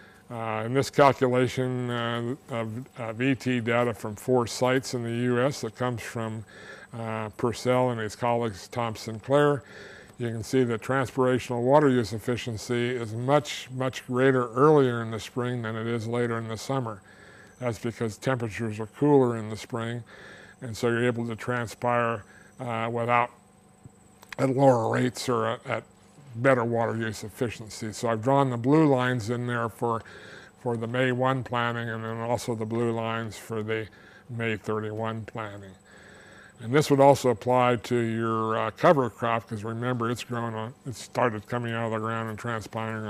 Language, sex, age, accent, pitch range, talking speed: English, male, 50-69, American, 110-125 Hz, 170 wpm